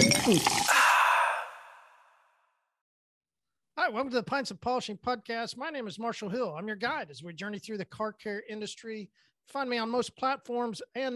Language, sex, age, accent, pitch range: English, male, 40-59, American, 180-240 Hz